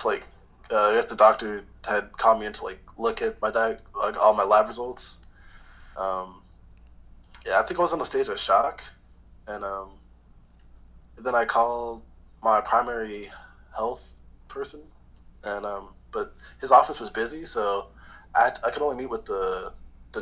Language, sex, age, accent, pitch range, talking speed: English, male, 20-39, American, 85-110 Hz, 170 wpm